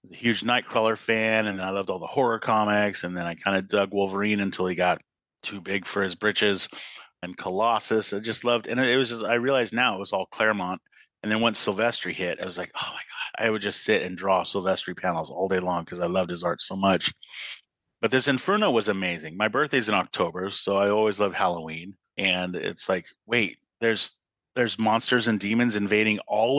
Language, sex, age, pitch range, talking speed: English, male, 30-49, 95-110 Hz, 215 wpm